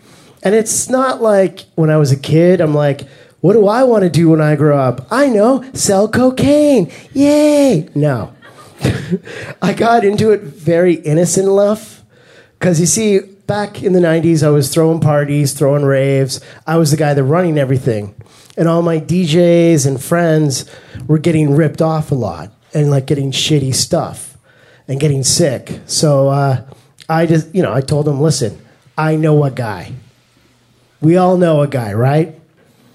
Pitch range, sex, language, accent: 140-175 Hz, male, English, American